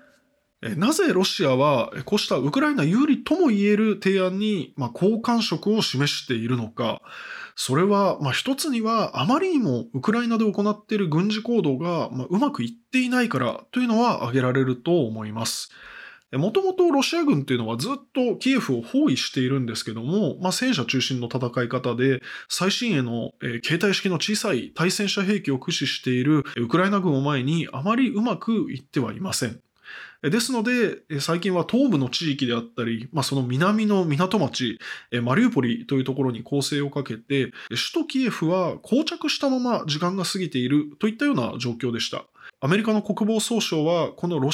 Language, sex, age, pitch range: Japanese, male, 20-39, 135-225 Hz